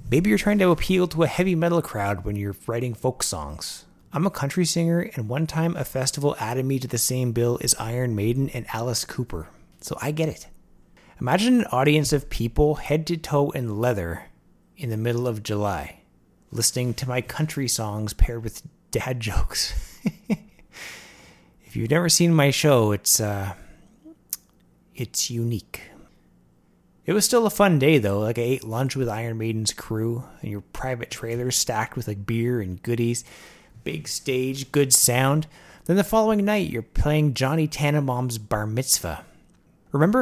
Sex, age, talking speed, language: male, 30-49, 170 wpm, English